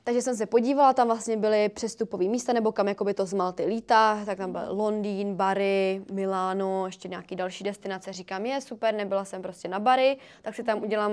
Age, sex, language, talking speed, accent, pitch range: 20-39, female, Czech, 200 wpm, native, 200-240 Hz